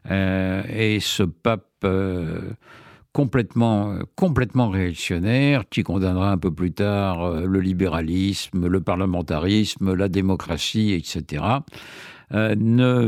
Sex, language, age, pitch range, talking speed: male, French, 60-79, 95-125 Hz, 110 wpm